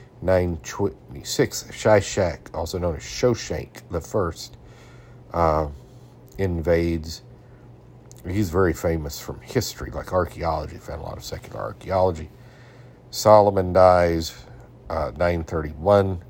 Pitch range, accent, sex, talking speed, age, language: 80-105 Hz, American, male, 100 wpm, 50-69, English